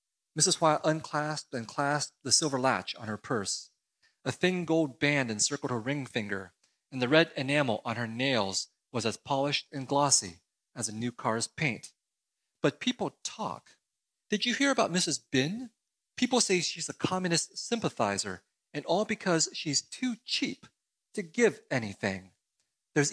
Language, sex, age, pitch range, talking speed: English, male, 30-49, 115-160 Hz, 160 wpm